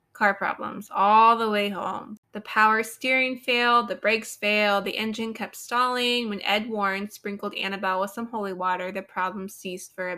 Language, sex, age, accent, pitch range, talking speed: English, female, 20-39, American, 190-230 Hz, 185 wpm